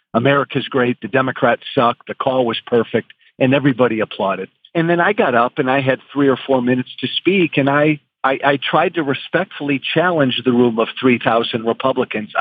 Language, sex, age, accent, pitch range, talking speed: English, male, 50-69, American, 125-155 Hz, 195 wpm